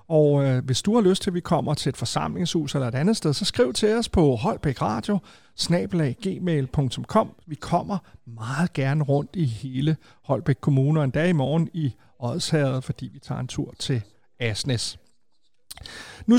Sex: male